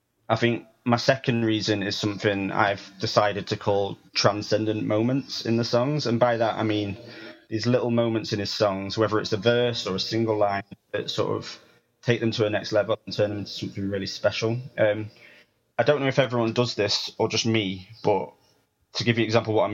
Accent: British